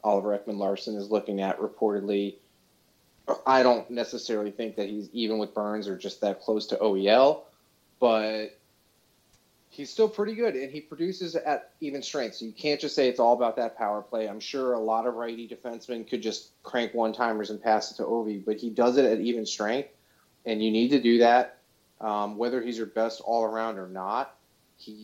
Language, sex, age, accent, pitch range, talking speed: English, male, 30-49, American, 105-120 Hz, 200 wpm